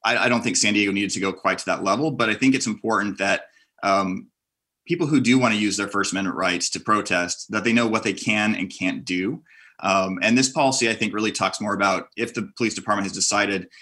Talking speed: 245 wpm